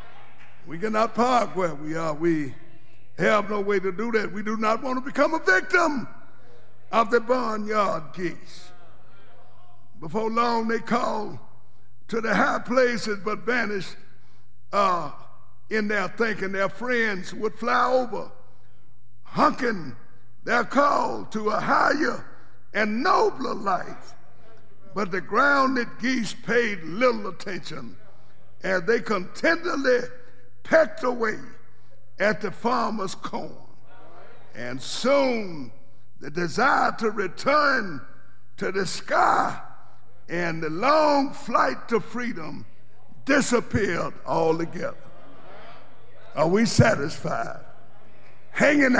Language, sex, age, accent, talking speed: English, male, 60-79, American, 110 wpm